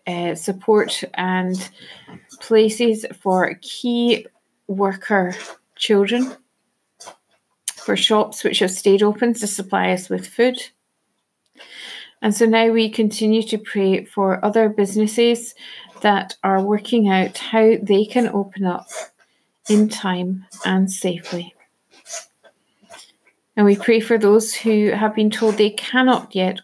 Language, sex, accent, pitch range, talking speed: English, female, British, 195-225 Hz, 120 wpm